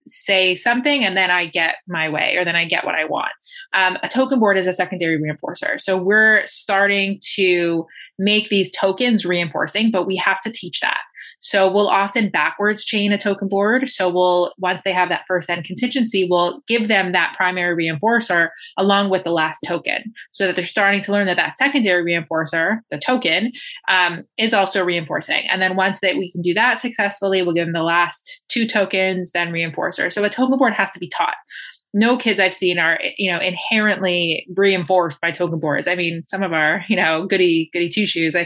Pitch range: 175-215 Hz